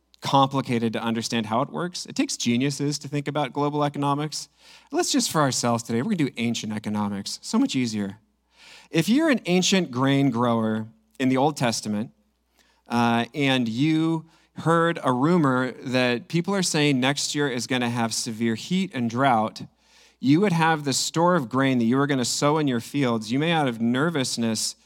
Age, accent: 40-59, American